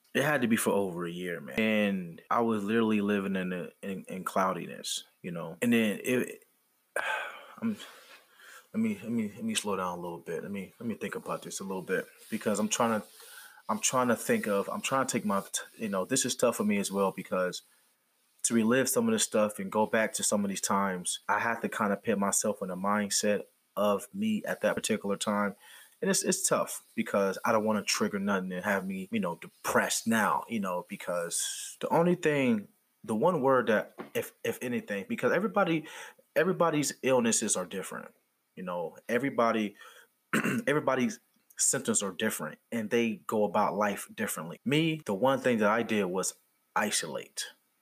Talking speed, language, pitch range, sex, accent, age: 195 wpm, English, 100-160 Hz, male, American, 20-39